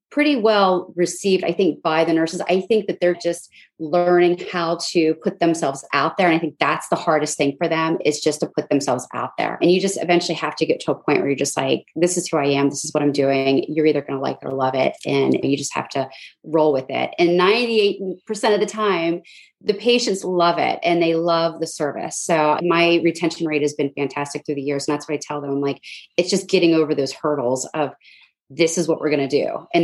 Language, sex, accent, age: English, female, American, 30-49